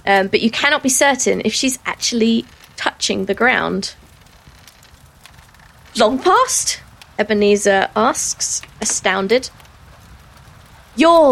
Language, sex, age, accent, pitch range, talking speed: English, female, 20-39, British, 205-275 Hz, 95 wpm